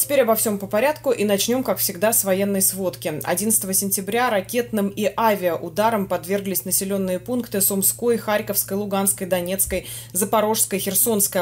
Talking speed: 135 wpm